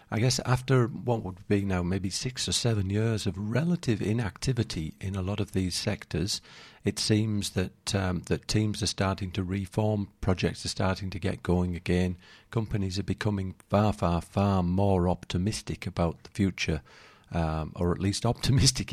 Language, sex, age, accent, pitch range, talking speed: English, male, 50-69, British, 90-110 Hz, 170 wpm